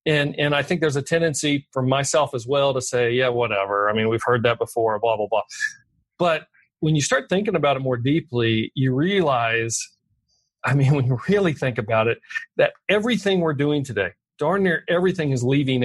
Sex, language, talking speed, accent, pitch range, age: male, English, 200 wpm, American, 125-165 Hz, 40-59